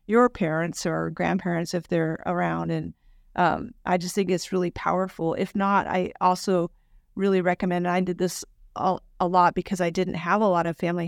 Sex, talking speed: female, 195 wpm